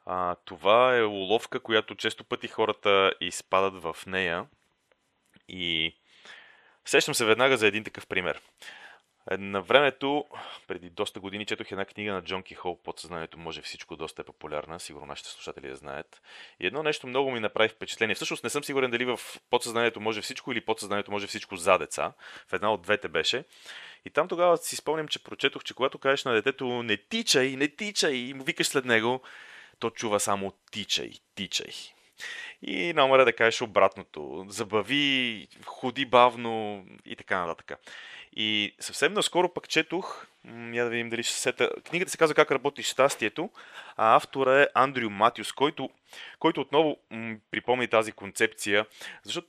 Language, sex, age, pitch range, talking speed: Bulgarian, male, 30-49, 100-135 Hz, 165 wpm